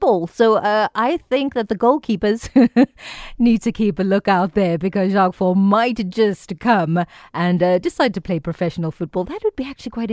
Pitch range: 185-235 Hz